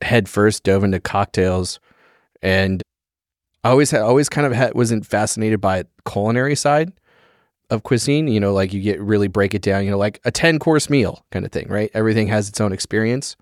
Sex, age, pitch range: male, 30-49, 100-120 Hz